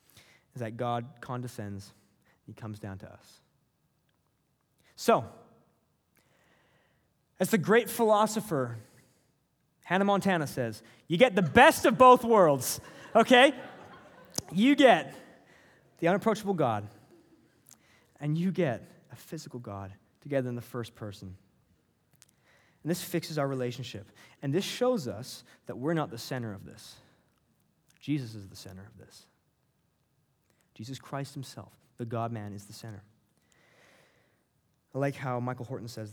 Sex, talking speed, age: male, 130 wpm, 20-39